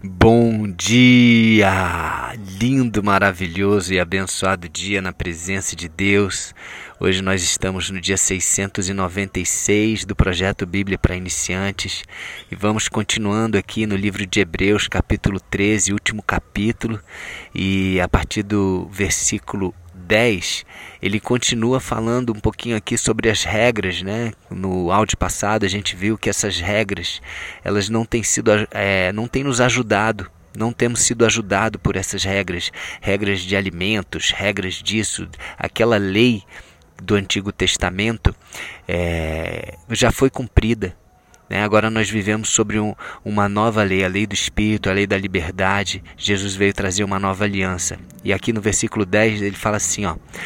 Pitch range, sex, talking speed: 95-110 Hz, male, 140 wpm